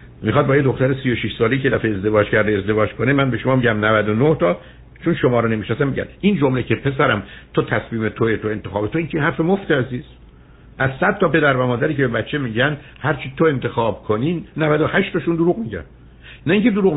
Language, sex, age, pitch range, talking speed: Persian, male, 60-79, 105-150 Hz, 210 wpm